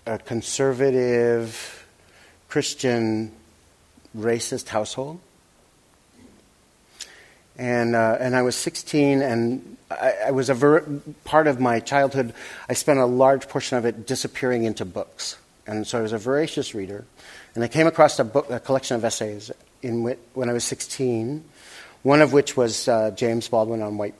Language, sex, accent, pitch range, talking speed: English, male, American, 115-145 Hz, 155 wpm